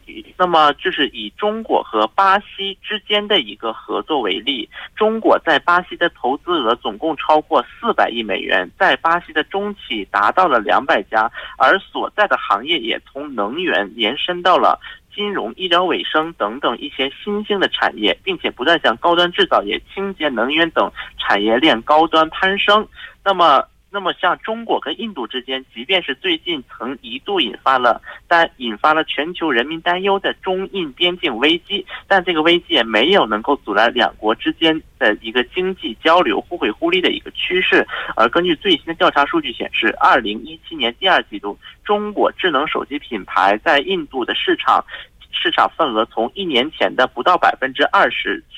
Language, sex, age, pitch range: Korean, male, 50-69, 155-215 Hz